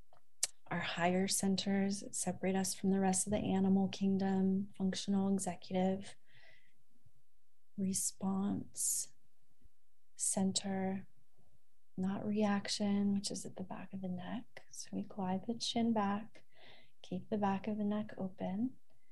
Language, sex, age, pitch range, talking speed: English, female, 30-49, 195-215 Hz, 120 wpm